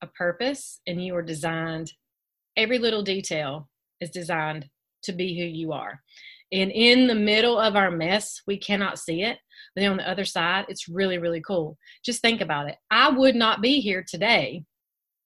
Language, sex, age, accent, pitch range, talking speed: English, female, 30-49, American, 180-245 Hz, 175 wpm